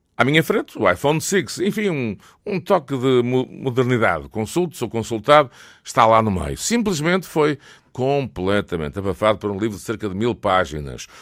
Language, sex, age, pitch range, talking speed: Portuguese, male, 50-69, 95-125 Hz, 165 wpm